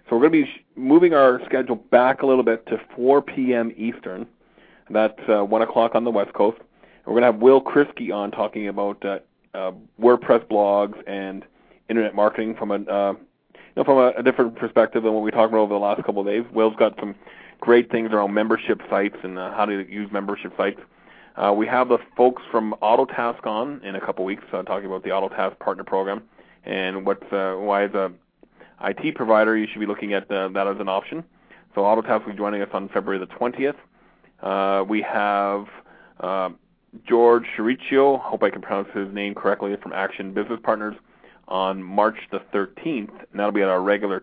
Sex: male